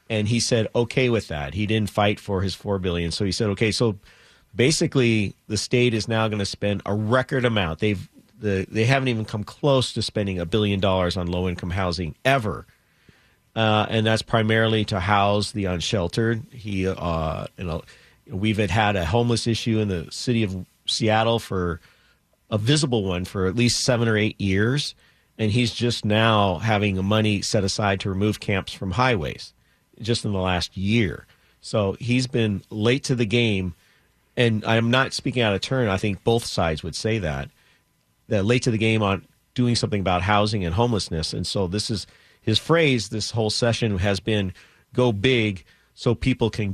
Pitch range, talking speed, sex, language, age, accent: 95-115 Hz, 190 wpm, male, English, 40-59, American